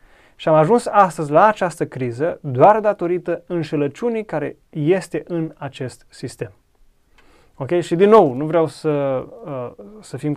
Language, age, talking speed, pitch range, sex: Romanian, 30-49, 135 wpm, 135-175 Hz, male